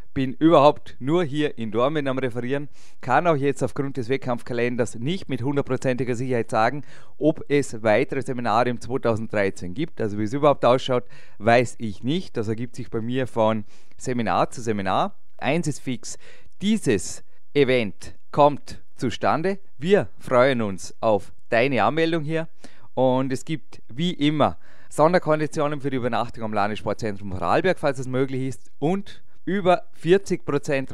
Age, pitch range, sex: 30-49, 120-145 Hz, male